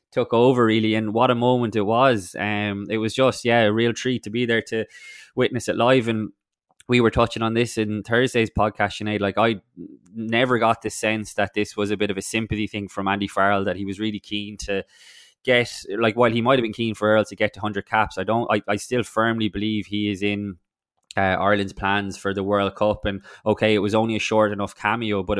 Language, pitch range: English, 100-115 Hz